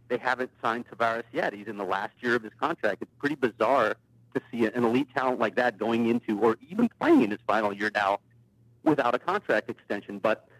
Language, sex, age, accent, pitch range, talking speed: English, male, 40-59, American, 115-130 Hz, 215 wpm